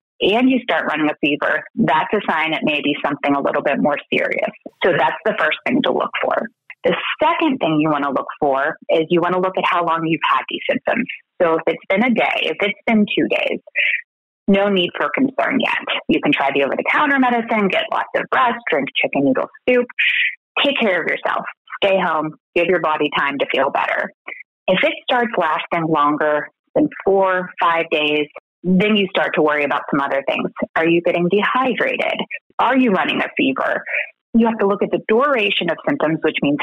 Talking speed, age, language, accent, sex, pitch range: 210 wpm, 30-49, English, American, female, 165-245 Hz